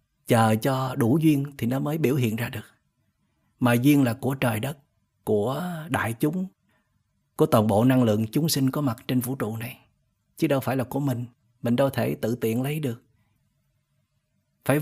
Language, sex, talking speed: Vietnamese, male, 190 wpm